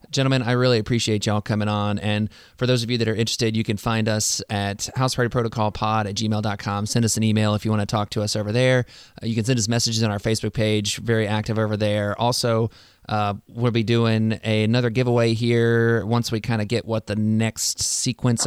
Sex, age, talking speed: male, 20-39, 220 wpm